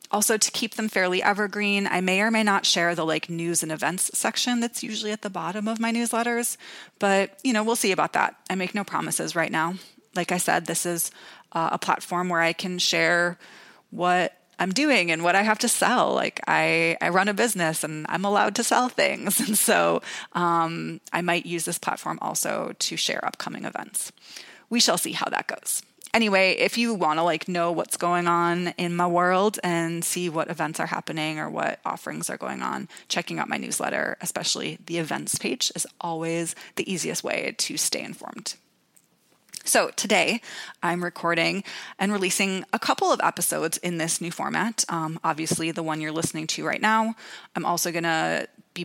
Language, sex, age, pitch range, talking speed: English, female, 30-49, 170-210 Hz, 195 wpm